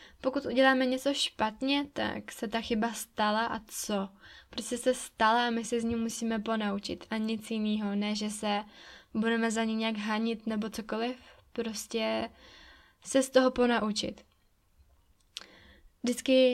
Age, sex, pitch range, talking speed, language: 10-29, female, 215-240 Hz, 145 wpm, Czech